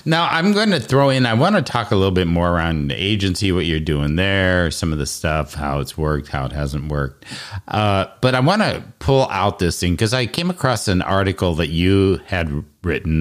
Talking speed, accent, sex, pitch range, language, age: 230 wpm, American, male, 75-110 Hz, English, 50-69